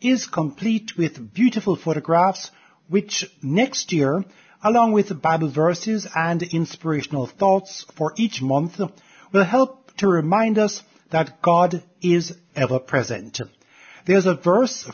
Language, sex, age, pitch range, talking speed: English, male, 60-79, 155-205 Hz, 125 wpm